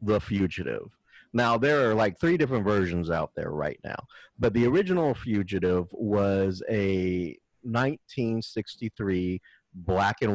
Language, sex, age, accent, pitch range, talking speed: English, male, 30-49, American, 90-110 Hz, 130 wpm